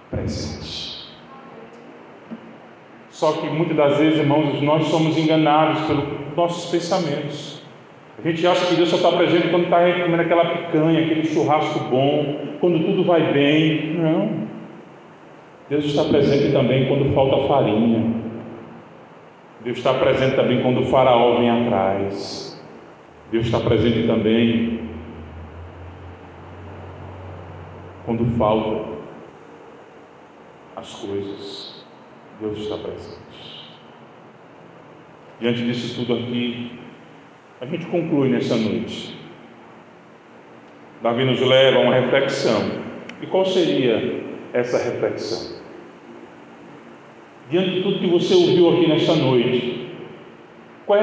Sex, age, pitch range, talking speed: male, 40-59, 115-160 Hz, 110 wpm